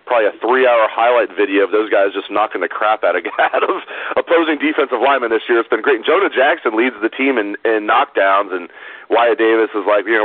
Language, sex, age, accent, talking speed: English, male, 40-59, American, 225 wpm